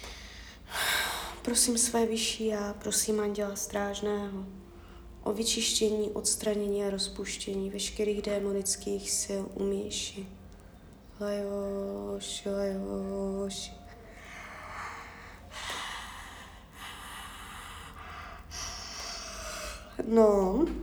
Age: 20-39